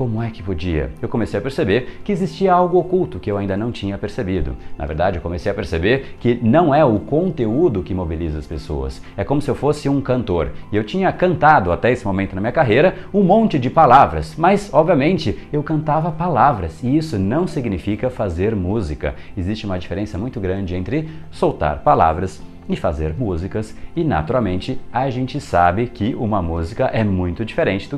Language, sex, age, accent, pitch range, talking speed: Portuguese, male, 30-49, Brazilian, 85-120 Hz, 185 wpm